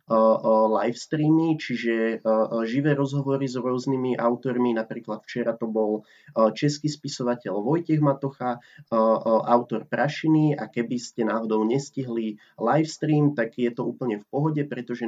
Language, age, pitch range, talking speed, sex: Slovak, 20-39, 115-135 Hz, 120 wpm, male